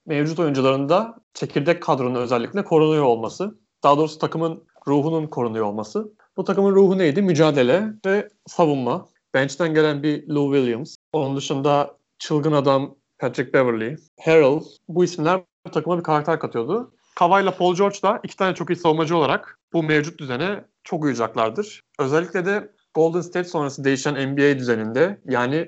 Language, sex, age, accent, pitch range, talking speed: Turkish, male, 40-59, native, 135-175 Hz, 145 wpm